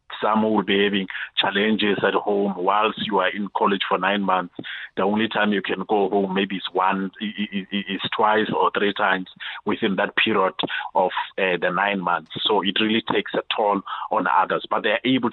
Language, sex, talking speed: English, male, 190 wpm